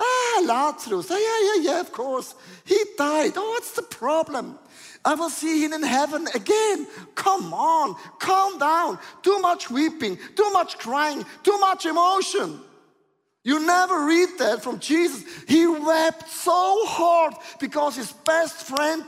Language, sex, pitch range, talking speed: English, male, 195-325 Hz, 145 wpm